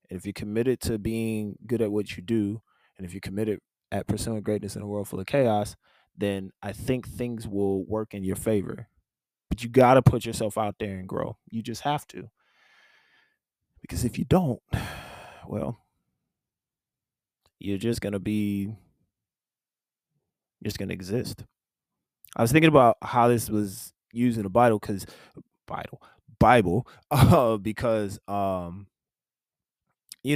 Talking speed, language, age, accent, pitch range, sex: 155 wpm, English, 20-39, American, 100-115 Hz, male